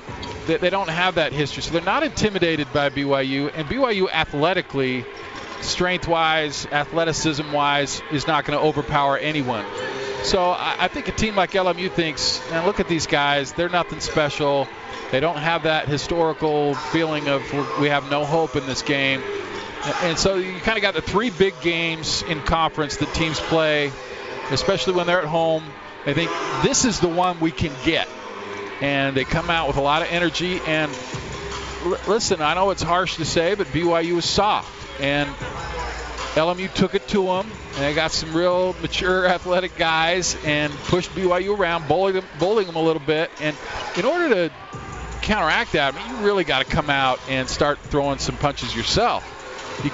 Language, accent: English, American